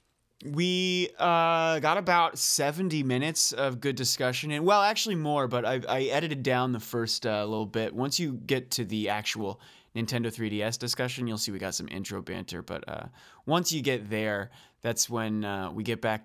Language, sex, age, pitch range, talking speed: English, male, 30-49, 110-135 Hz, 190 wpm